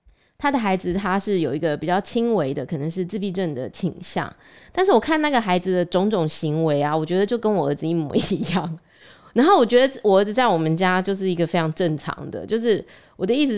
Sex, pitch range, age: female, 165-220 Hz, 20-39